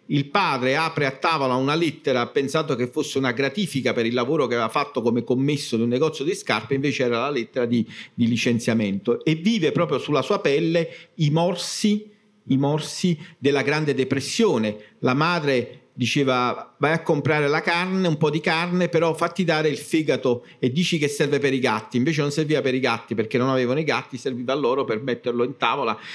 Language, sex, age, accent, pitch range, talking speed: Italian, male, 50-69, native, 125-175 Hz, 200 wpm